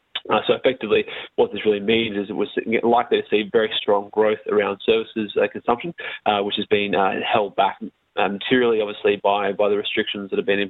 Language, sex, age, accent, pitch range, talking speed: English, male, 20-39, Australian, 100-130 Hz, 215 wpm